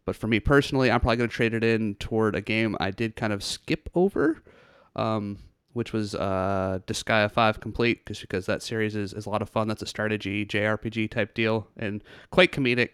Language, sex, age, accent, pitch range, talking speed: English, male, 30-49, American, 105-120 Hz, 205 wpm